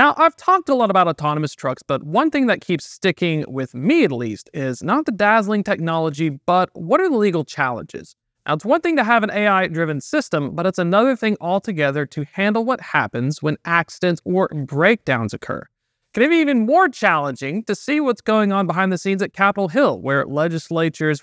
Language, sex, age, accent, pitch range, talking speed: English, male, 30-49, American, 150-215 Hz, 200 wpm